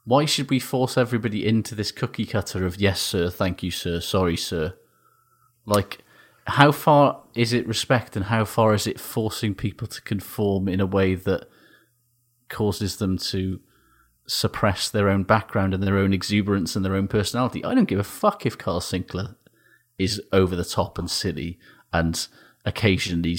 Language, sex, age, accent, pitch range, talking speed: English, male, 30-49, British, 95-120 Hz, 170 wpm